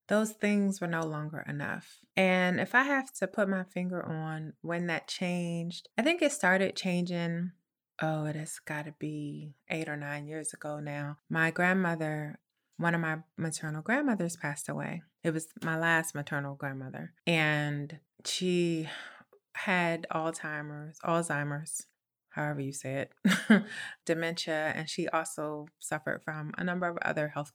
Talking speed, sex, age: 150 wpm, female, 20-39